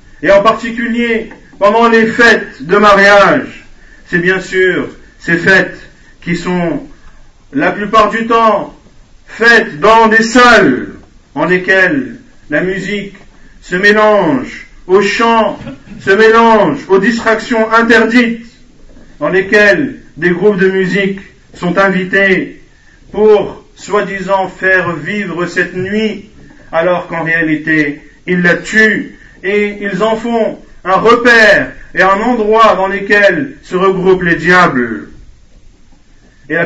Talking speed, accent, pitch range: 120 wpm, French, 175-225 Hz